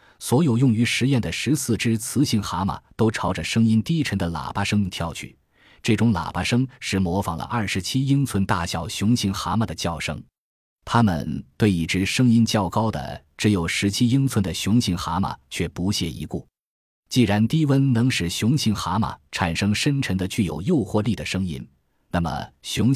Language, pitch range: Chinese, 85-115 Hz